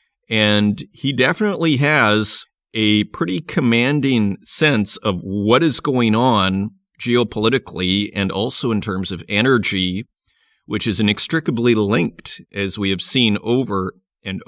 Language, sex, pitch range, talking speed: English, male, 100-125 Hz, 125 wpm